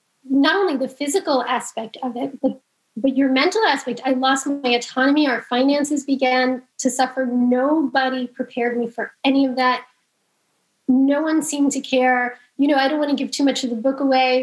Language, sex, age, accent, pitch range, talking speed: English, female, 10-29, American, 250-290 Hz, 190 wpm